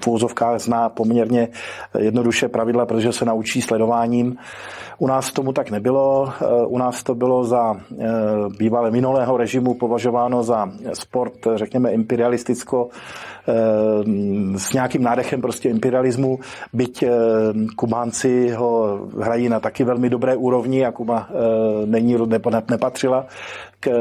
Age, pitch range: 40-59, 110-125 Hz